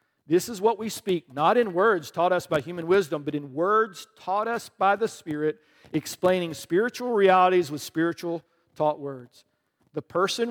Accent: American